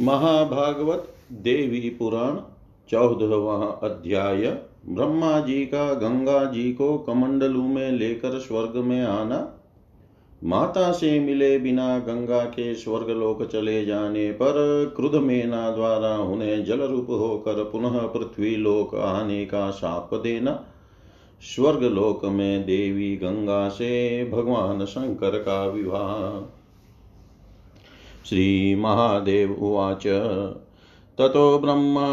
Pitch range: 100-125 Hz